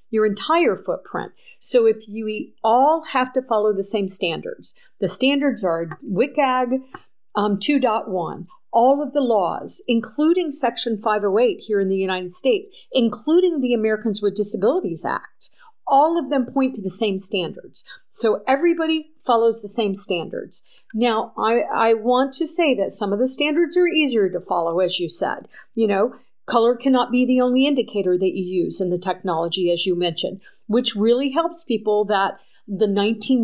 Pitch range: 205-265 Hz